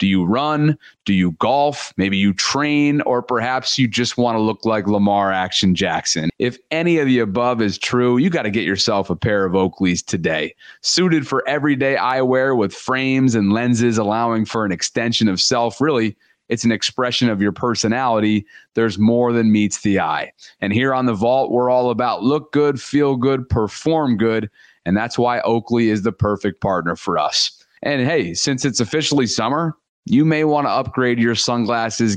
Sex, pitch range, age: male, 110-140 Hz, 30-49